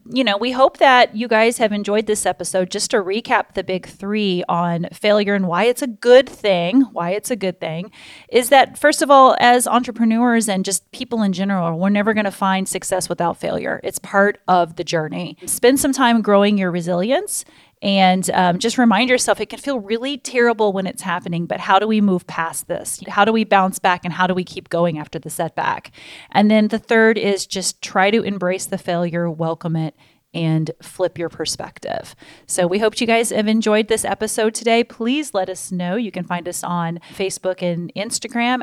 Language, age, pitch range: English, 30-49, 180-235 Hz